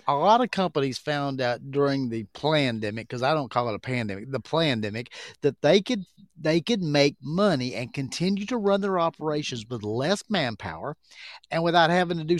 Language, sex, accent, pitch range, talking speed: English, male, American, 135-190 Hz, 190 wpm